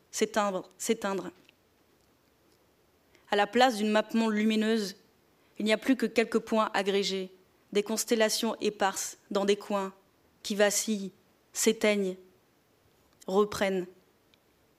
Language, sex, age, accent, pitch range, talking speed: French, female, 20-39, French, 210-235 Hz, 105 wpm